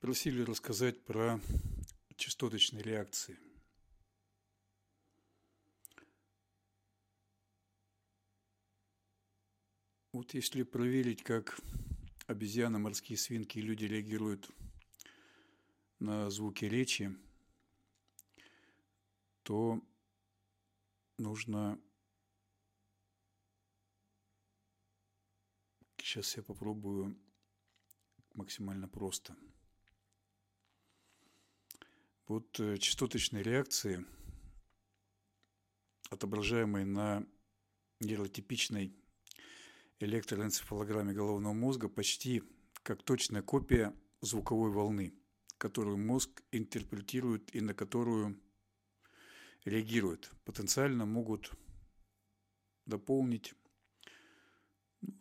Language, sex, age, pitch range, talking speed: Russian, male, 50-69, 100-115 Hz, 55 wpm